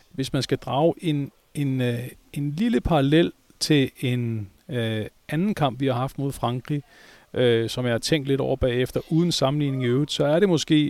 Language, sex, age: Danish, male, 40-59